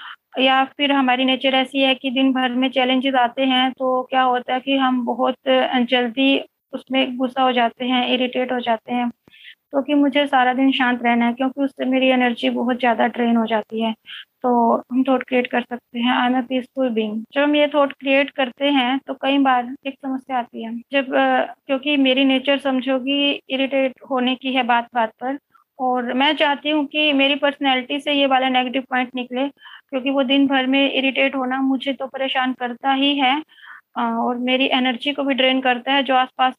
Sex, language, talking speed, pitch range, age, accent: female, Hindi, 195 wpm, 250-275 Hz, 20-39, native